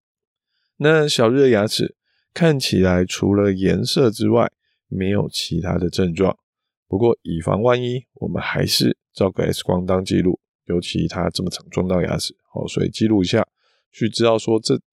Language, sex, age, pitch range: Chinese, male, 20-39, 95-125 Hz